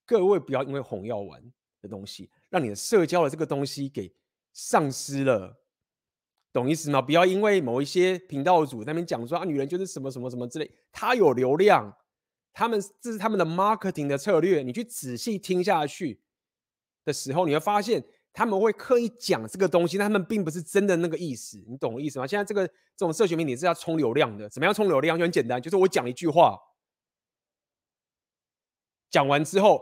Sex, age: male, 30-49